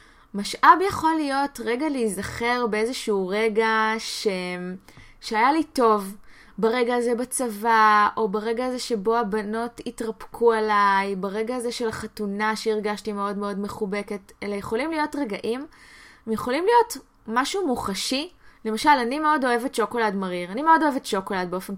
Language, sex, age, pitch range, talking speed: Hebrew, female, 20-39, 205-260 Hz, 135 wpm